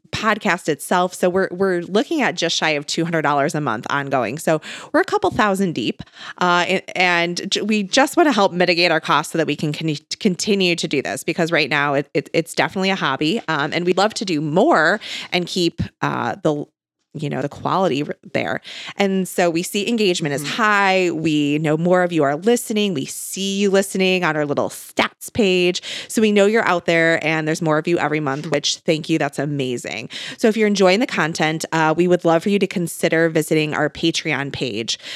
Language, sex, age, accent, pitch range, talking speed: English, female, 20-39, American, 155-190 Hz, 210 wpm